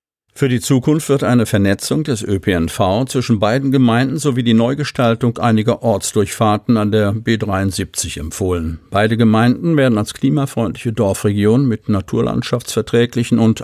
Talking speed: 130 wpm